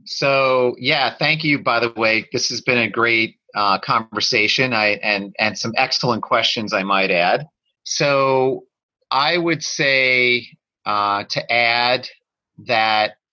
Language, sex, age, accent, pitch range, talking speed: English, male, 30-49, American, 110-140 Hz, 140 wpm